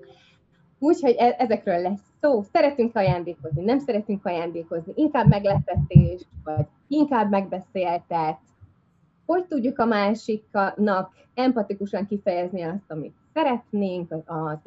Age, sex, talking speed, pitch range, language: 20-39, female, 100 wpm, 160-215 Hz, Hungarian